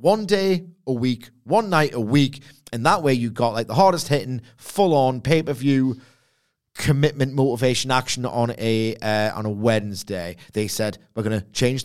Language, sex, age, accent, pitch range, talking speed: English, male, 30-49, British, 115-145 Hz, 185 wpm